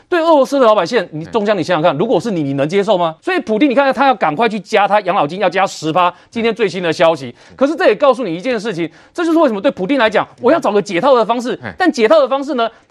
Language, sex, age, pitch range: Chinese, male, 30-49, 190-275 Hz